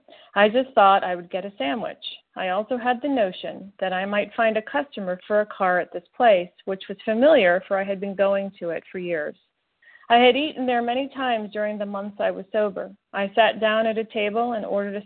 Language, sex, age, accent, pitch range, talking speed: English, female, 40-59, American, 200-255 Hz, 230 wpm